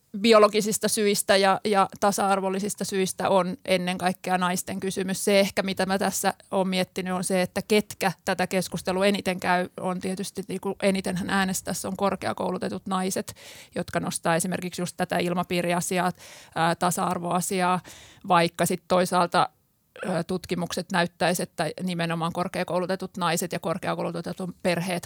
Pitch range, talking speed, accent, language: 180-190 Hz, 125 wpm, native, Finnish